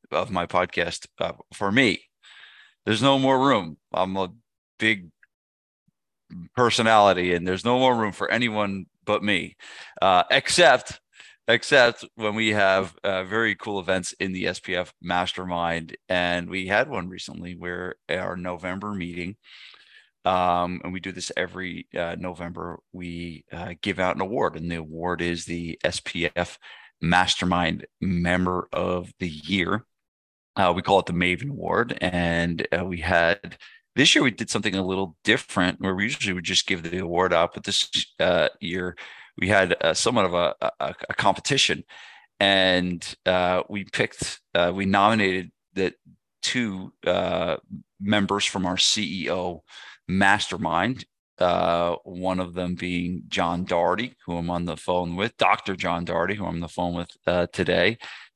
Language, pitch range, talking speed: English, 85-100 Hz, 155 wpm